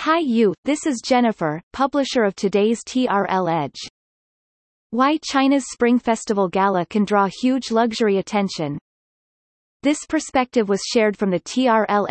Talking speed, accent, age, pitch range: 135 wpm, American, 30-49, 185-240 Hz